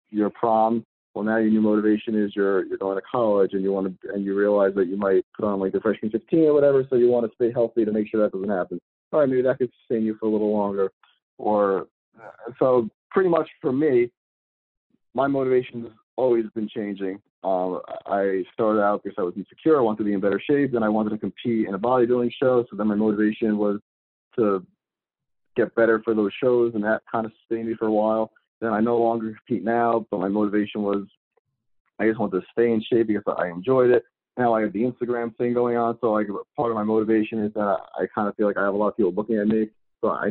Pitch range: 100-120 Hz